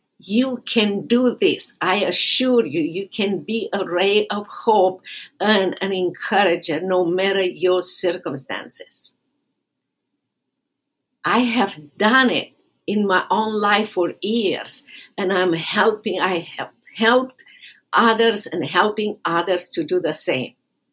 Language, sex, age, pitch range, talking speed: English, female, 60-79, 185-230 Hz, 130 wpm